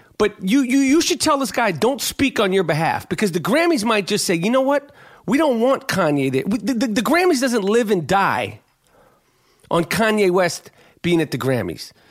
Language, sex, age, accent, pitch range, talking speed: English, male, 40-59, American, 155-220 Hz, 215 wpm